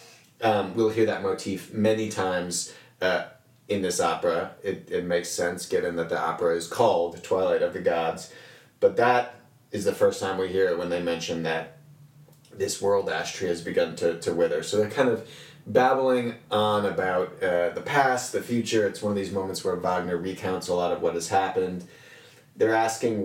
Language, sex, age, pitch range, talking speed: English, male, 30-49, 95-145 Hz, 190 wpm